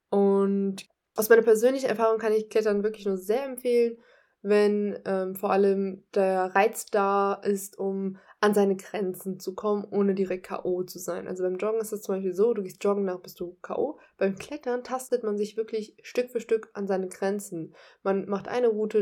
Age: 20-39